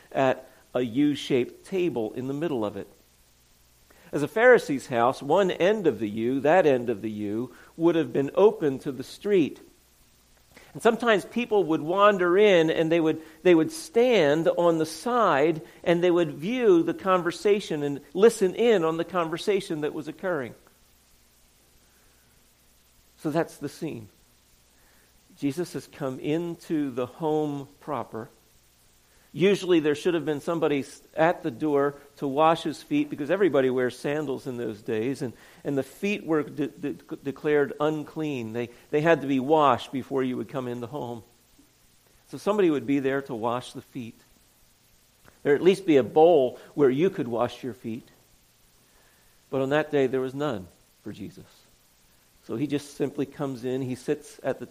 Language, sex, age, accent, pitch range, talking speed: English, male, 50-69, American, 120-165 Hz, 170 wpm